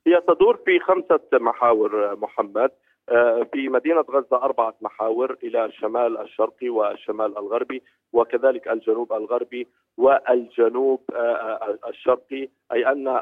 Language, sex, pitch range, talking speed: Arabic, male, 120-140 Hz, 105 wpm